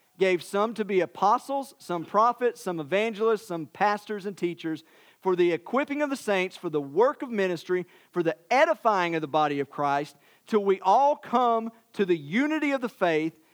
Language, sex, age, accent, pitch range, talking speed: English, male, 50-69, American, 165-230 Hz, 185 wpm